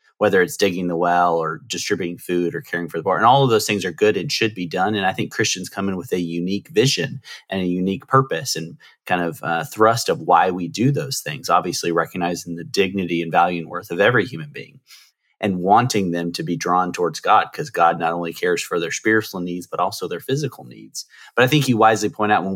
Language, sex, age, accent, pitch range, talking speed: English, male, 30-49, American, 85-110 Hz, 240 wpm